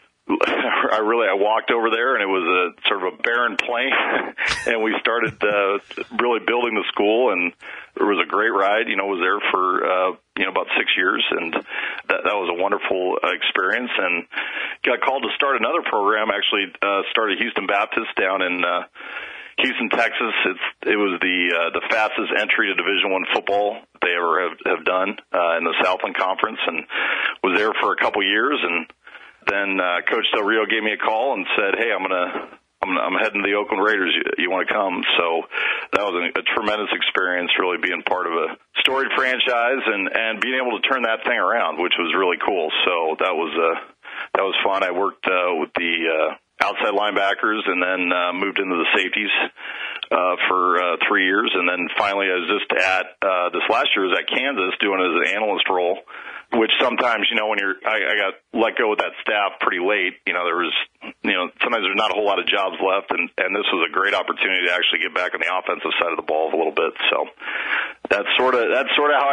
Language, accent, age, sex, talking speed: English, American, 40-59, male, 220 wpm